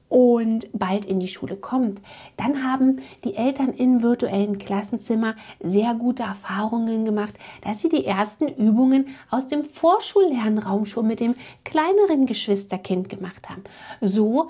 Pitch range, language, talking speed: 205-270 Hz, German, 135 wpm